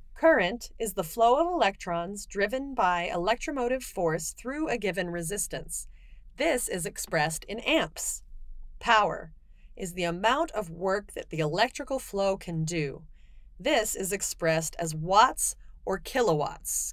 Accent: American